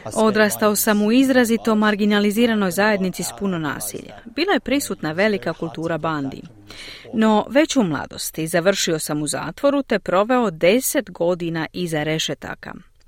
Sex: female